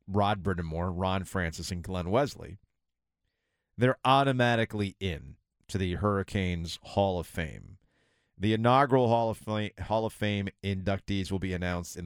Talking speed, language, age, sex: 135 wpm, English, 40-59, male